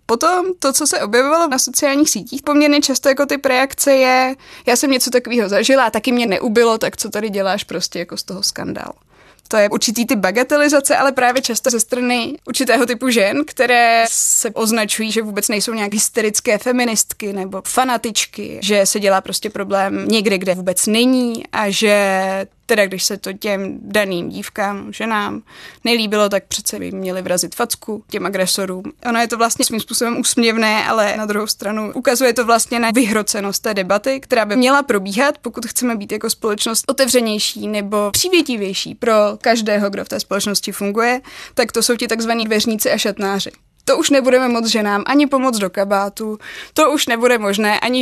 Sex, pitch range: female, 205-245 Hz